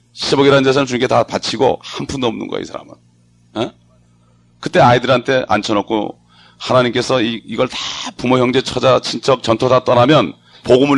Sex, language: male, English